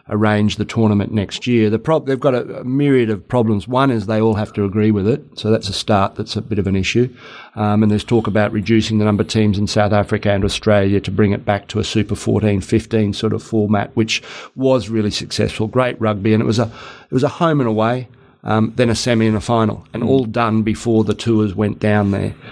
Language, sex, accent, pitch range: English, male, Australian, 105-115 Hz